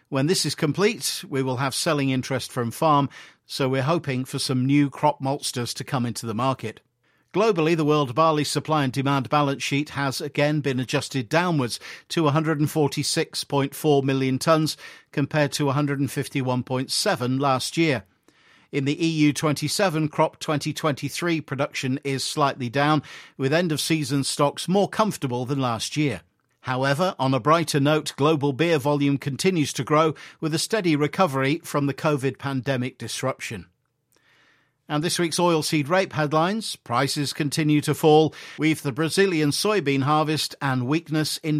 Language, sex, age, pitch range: English, male, 50-69, 135-155 Hz